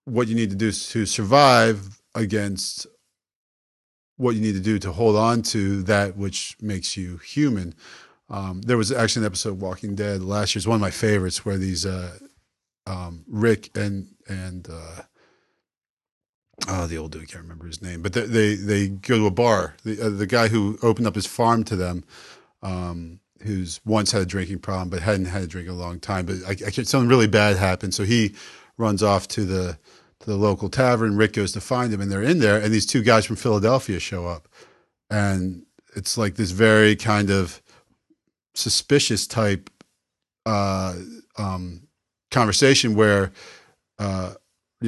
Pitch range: 95-110 Hz